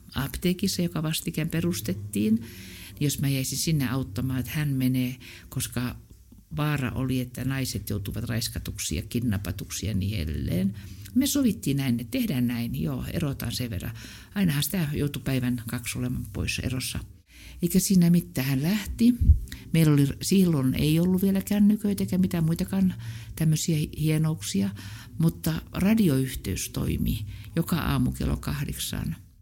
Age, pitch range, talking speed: 60-79, 100-150 Hz, 130 wpm